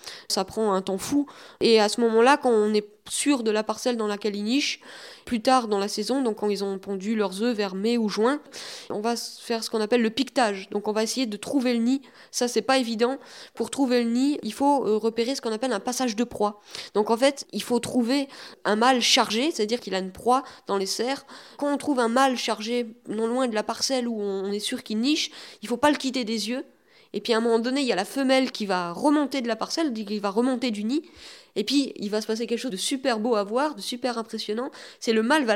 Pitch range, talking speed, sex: 220-265 Hz, 260 wpm, female